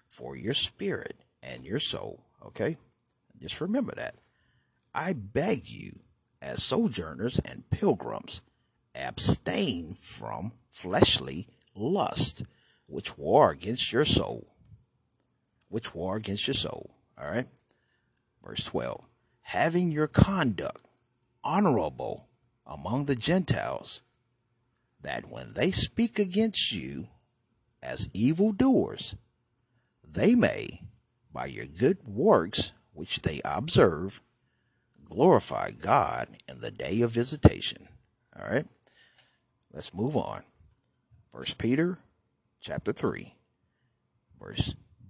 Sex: male